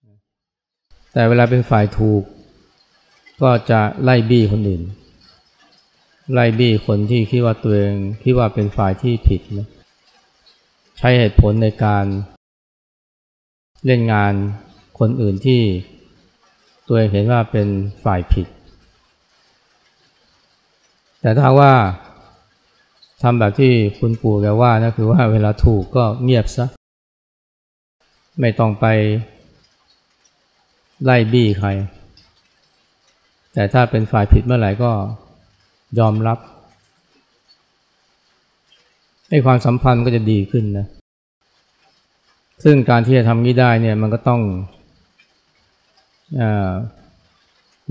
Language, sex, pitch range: Thai, male, 100-120 Hz